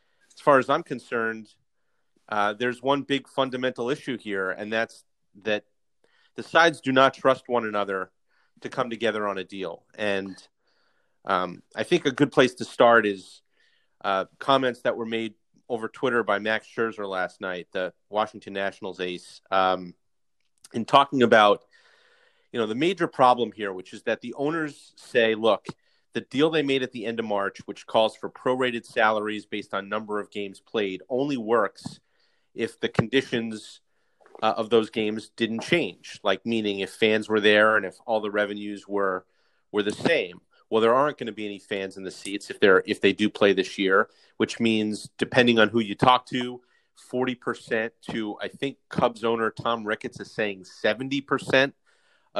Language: English